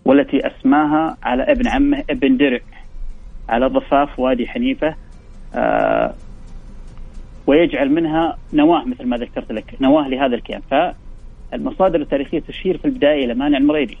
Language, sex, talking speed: Arabic, male, 130 wpm